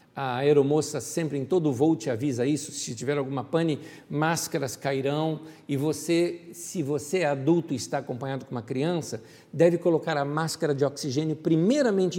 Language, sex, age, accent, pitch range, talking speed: Portuguese, male, 60-79, Brazilian, 155-215 Hz, 165 wpm